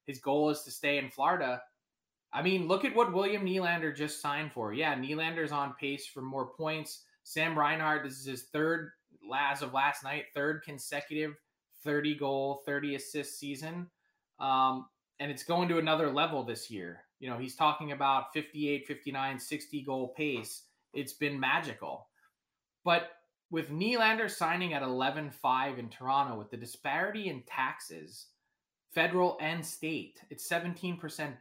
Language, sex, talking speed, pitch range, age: English, male, 155 wpm, 135-170 Hz, 20-39